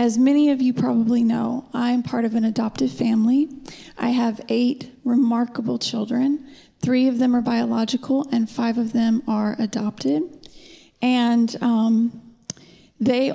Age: 30-49